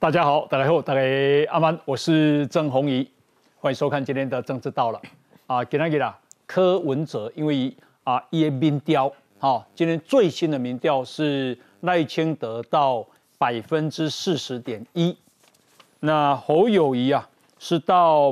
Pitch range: 135-180 Hz